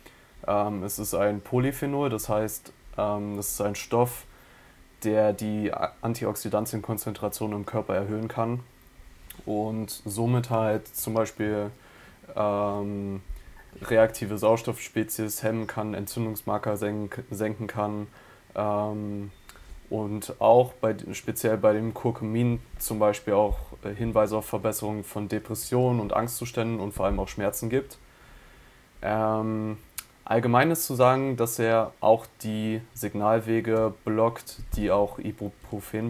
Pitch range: 105-115 Hz